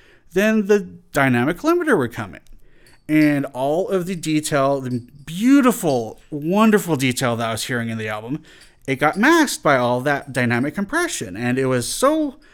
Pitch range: 115-175 Hz